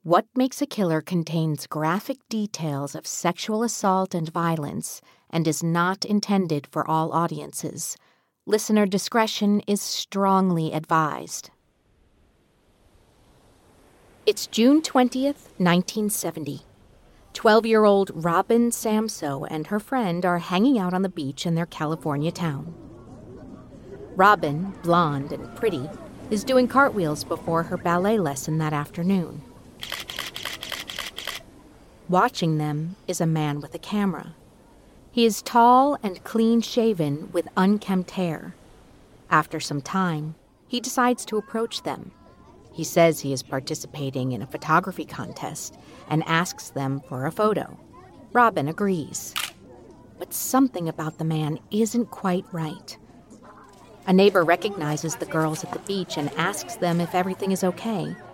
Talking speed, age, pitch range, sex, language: 125 wpm, 50-69, 155-210 Hz, female, English